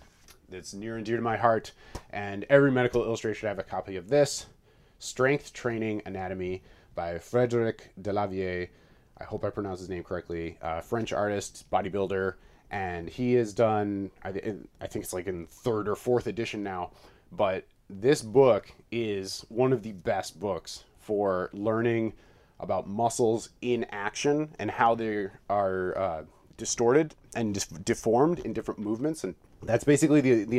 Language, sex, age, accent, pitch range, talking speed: English, male, 30-49, American, 100-125 Hz, 160 wpm